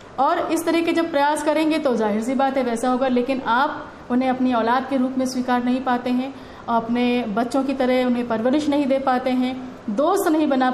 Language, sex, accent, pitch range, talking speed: Hindi, female, native, 235-280 Hz, 220 wpm